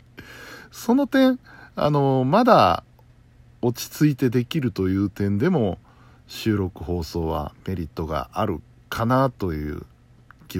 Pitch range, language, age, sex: 95-145 Hz, Japanese, 60-79, male